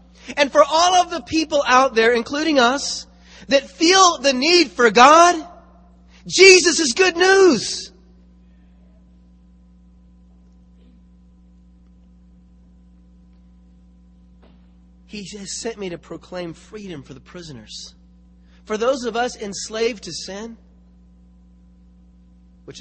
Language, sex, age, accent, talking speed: English, male, 30-49, American, 100 wpm